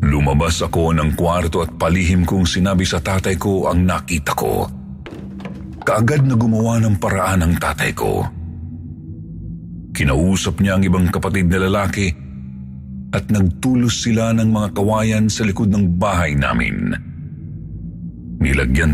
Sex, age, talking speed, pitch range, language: male, 50-69, 130 wpm, 75-95 Hz, Filipino